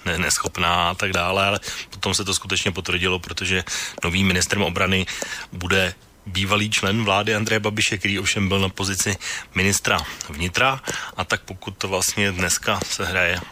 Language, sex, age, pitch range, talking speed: Slovak, male, 30-49, 90-100 Hz, 155 wpm